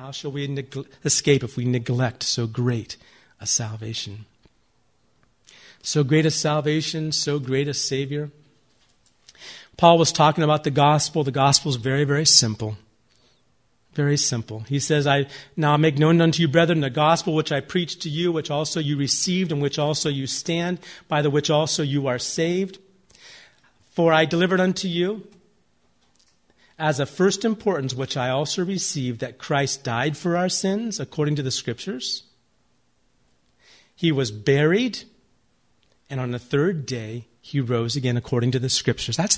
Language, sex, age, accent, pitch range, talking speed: English, male, 40-59, American, 125-165 Hz, 160 wpm